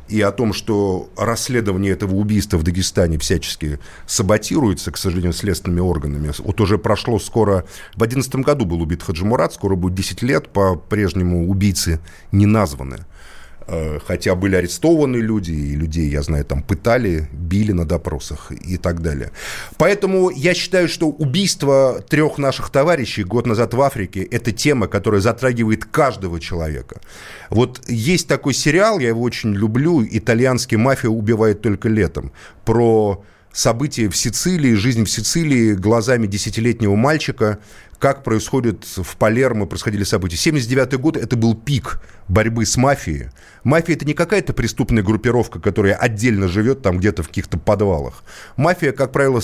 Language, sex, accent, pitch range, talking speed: Russian, male, native, 95-130 Hz, 150 wpm